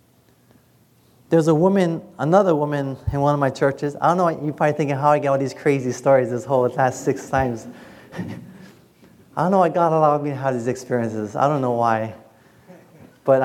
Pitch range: 120-155 Hz